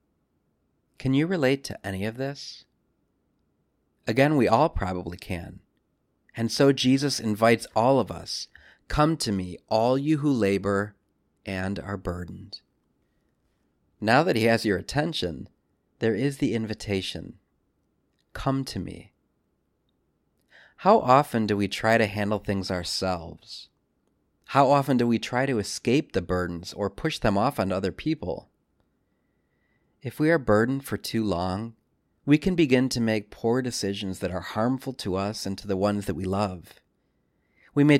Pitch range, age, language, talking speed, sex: 95-125 Hz, 30-49, English, 150 wpm, male